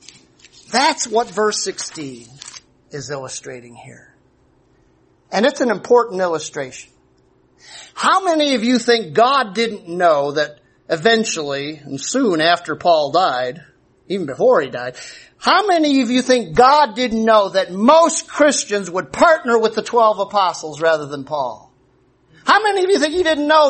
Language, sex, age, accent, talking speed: English, male, 50-69, American, 150 wpm